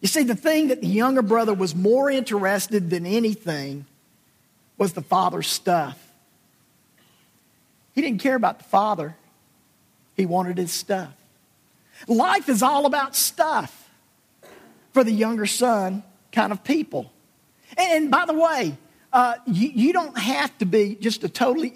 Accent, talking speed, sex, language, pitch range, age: American, 145 wpm, male, English, 175-250 Hz, 50-69